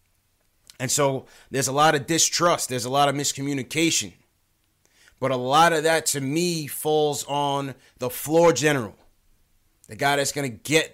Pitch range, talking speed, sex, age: 115-145 Hz, 165 wpm, male, 30-49